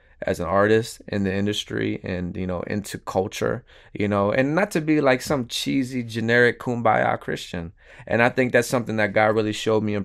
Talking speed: 205 wpm